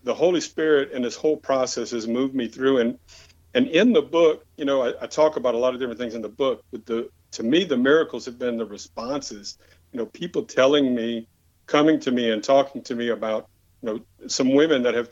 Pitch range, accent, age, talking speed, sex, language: 115-135 Hz, American, 50-69, 235 wpm, male, English